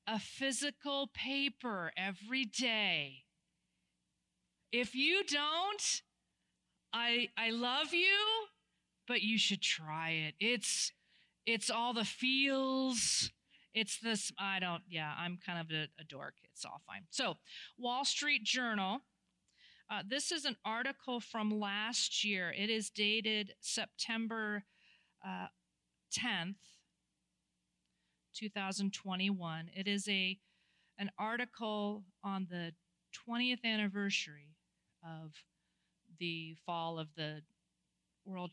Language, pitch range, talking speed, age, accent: English, 170-235 Hz, 110 wpm, 40-59, American